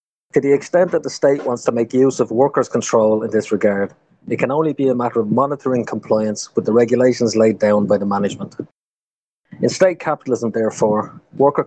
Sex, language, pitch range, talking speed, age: male, English, 110-130 Hz, 195 wpm, 30-49